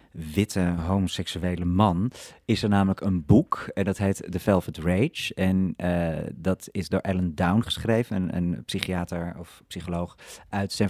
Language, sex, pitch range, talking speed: Dutch, male, 90-105 Hz, 160 wpm